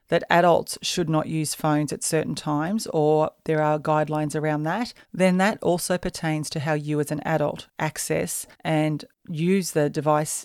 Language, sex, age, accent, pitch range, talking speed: English, female, 40-59, Australian, 150-185 Hz, 170 wpm